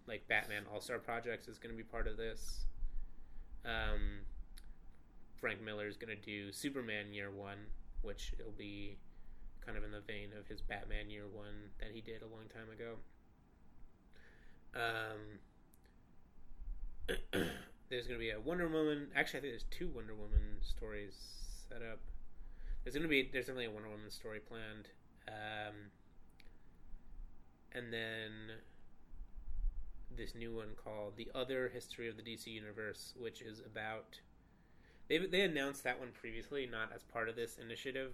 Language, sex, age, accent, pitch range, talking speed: English, male, 20-39, American, 100-115 Hz, 155 wpm